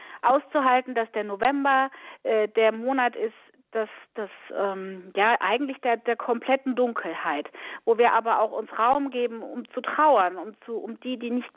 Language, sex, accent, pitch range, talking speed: German, female, German, 210-280 Hz, 170 wpm